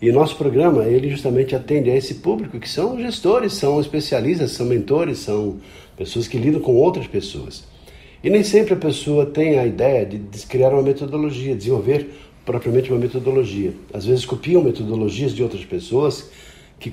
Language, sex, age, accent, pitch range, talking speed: Portuguese, male, 50-69, Brazilian, 105-145 Hz, 165 wpm